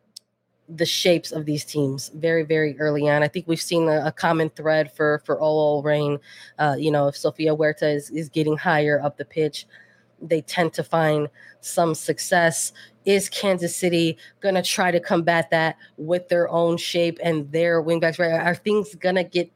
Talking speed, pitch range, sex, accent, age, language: 190 wpm, 155-185 Hz, female, American, 20-39, English